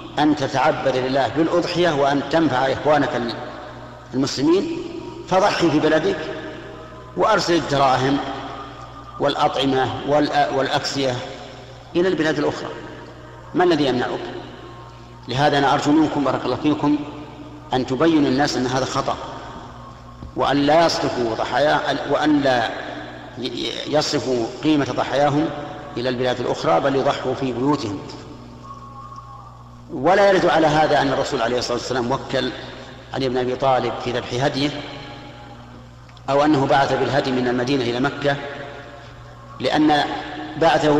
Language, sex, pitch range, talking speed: Arabic, male, 130-150 Hz, 110 wpm